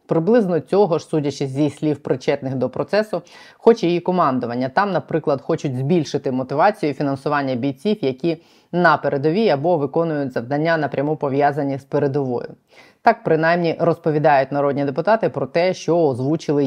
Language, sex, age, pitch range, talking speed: Ukrainian, female, 20-39, 140-175 Hz, 135 wpm